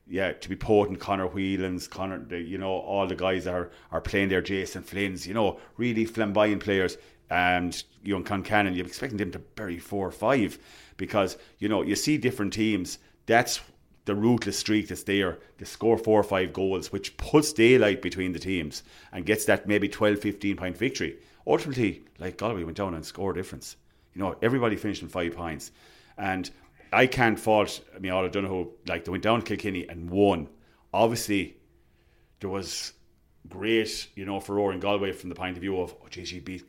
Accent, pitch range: Irish, 90-105 Hz